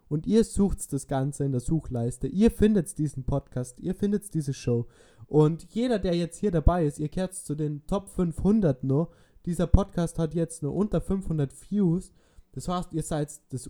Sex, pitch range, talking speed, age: male, 135-165 Hz, 190 wpm, 20-39